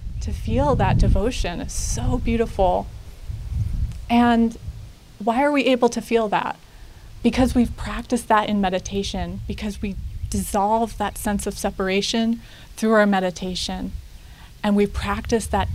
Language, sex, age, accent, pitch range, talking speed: English, female, 30-49, American, 180-220 Hz, 135 wpm